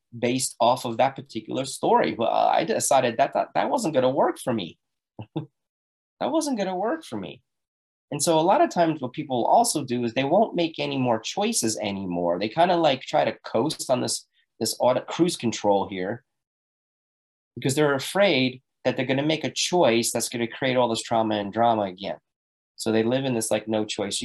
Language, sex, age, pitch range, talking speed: English, male, 30-49, 100-135 Hz, 210 wpm